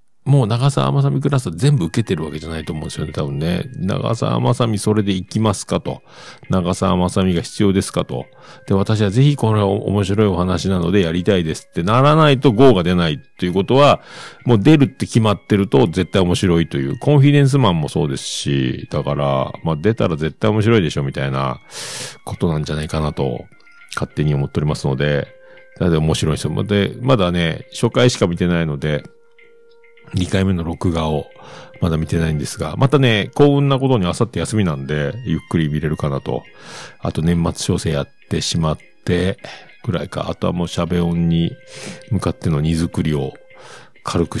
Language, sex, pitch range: Japanese, male, 80-120 Hz